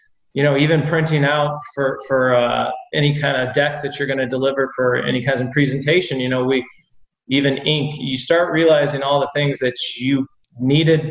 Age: 30-49